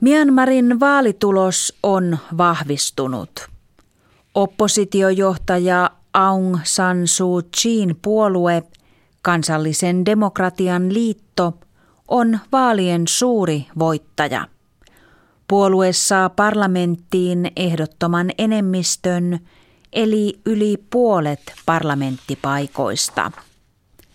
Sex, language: female, Finnish